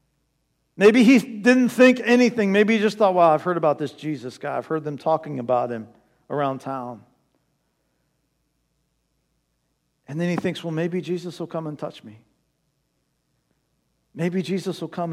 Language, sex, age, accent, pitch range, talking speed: English, male, 50-69, American, 145-205 Hz, 160 wpm